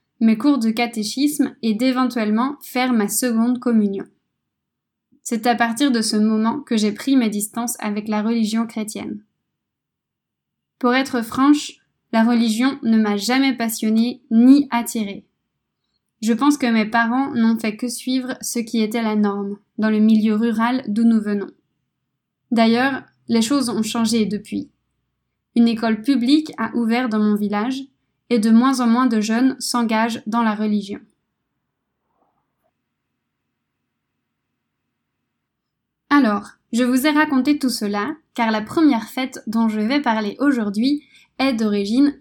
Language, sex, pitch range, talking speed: French, female, 215-255 Hz, 140 wpm